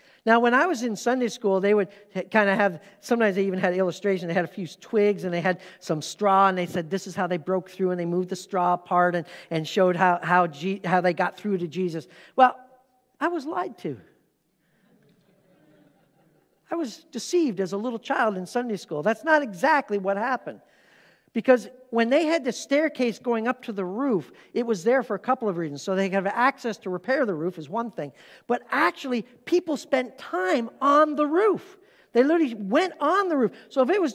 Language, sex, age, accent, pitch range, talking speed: English, male, 50-69, American, 190-260 Hz, 215 wpm